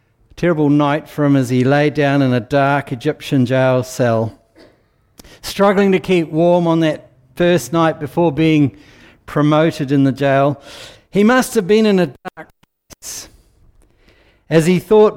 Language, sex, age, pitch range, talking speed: English, male, 60-79, 125-175 Hz, 155 wpm